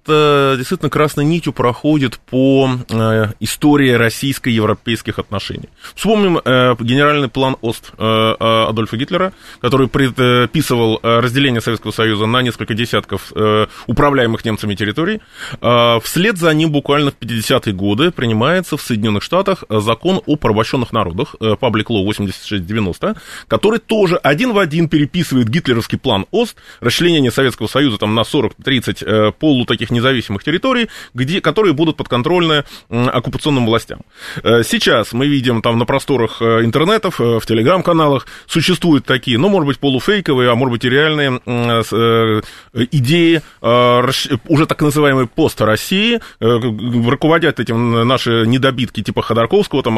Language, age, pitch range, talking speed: Russian, 20-39, 115-150 Hz, 120 wpm